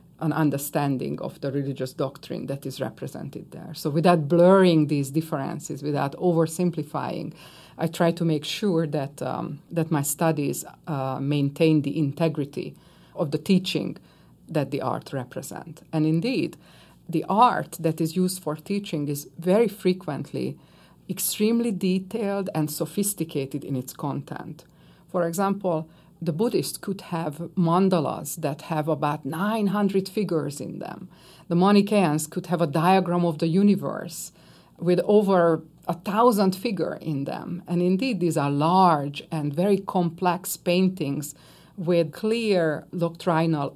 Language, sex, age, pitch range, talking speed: English, female, 50-69, 155-185 Hz, 135 wpm